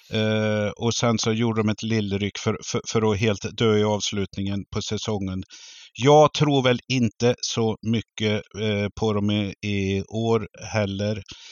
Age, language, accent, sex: 50-69, Swedish, native, male